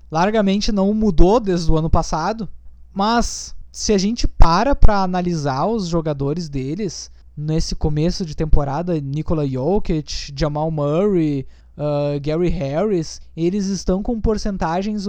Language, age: Portuguese, 20-39